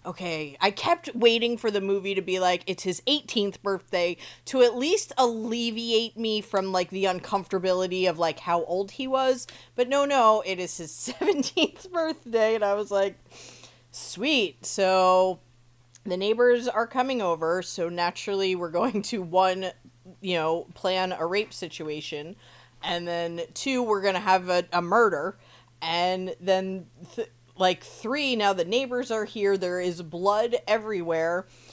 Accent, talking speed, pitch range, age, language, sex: American, 160 wpm, 175-230 Hz, 20-39, English, female